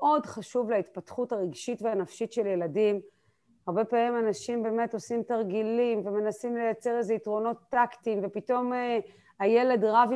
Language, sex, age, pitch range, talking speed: Hebrew, female, 30-49, 190-235 Hz, 130 wpm